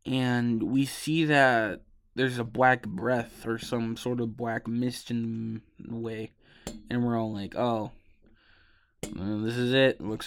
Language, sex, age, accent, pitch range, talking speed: English, male, 20-39, American, 115-135 Hz, 150 wpm